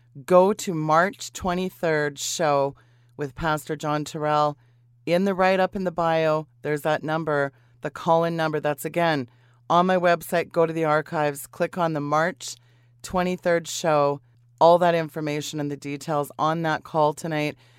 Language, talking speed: English, 155 wpm